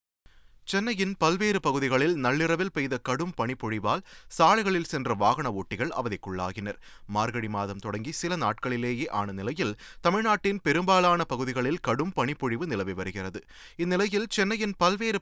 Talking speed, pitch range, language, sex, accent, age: 110 wpm, 105-165 Hz, Tamil, male, native, 30-49